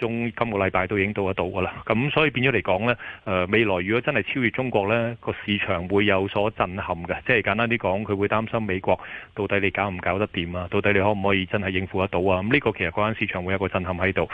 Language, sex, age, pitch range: Chinese, male, 30-49, 95-110 Hz